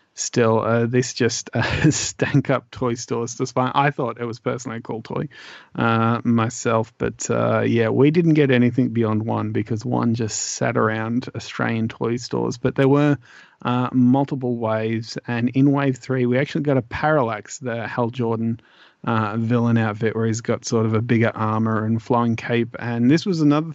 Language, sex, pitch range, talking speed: English, male, 115-130 Hz, 185 wpm